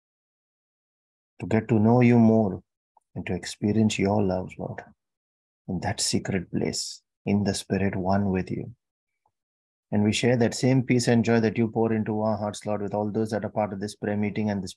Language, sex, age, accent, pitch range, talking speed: English, male, 30-49, Indian, 100-110 Hz, 200 wpm